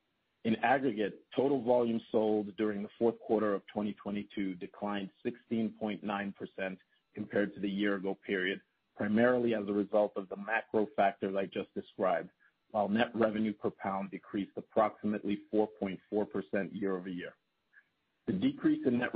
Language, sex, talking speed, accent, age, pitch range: English, male, 130 wpm, American, 40-59, 100-115 Hz